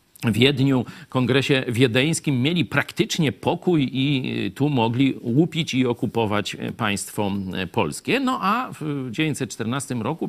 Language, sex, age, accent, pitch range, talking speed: Polish, male, 50-69, native, 115-160 Hz, 115 wpm